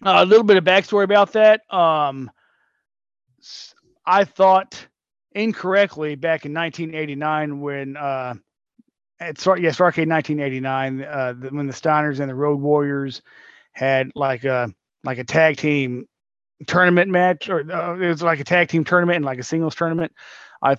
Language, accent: English, American